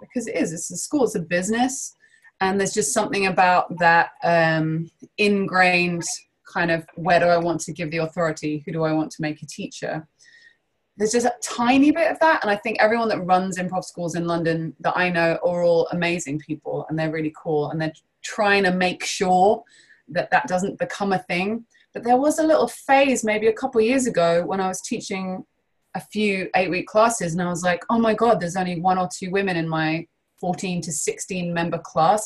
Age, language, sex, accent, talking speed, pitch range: 20-39, English, female, British, 215 wpm, 170-215 Hz